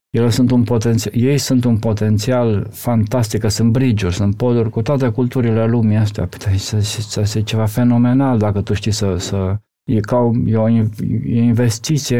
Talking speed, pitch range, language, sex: 165 wpm, 105-130 Hz, Romanian, male